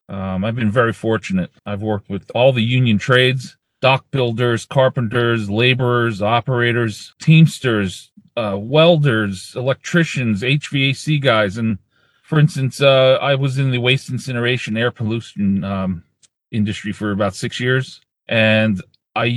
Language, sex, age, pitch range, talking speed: English, male, 40-59, 105-130 Hz, 135 wpm